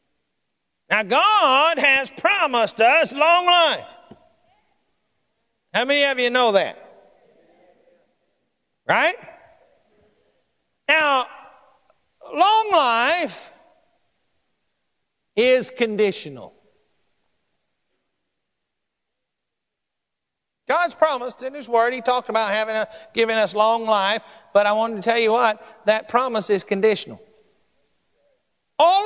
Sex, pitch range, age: male, 240-345 Hz, 50-69